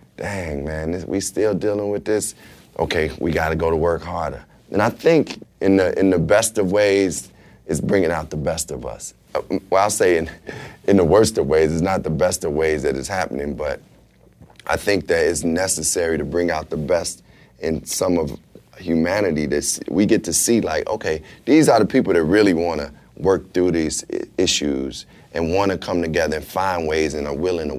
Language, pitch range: English, 80-100 Hz